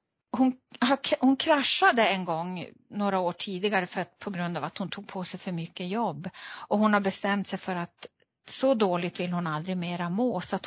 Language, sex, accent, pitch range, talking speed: Swedish, female, native, 175-220 Hz, 200 wpm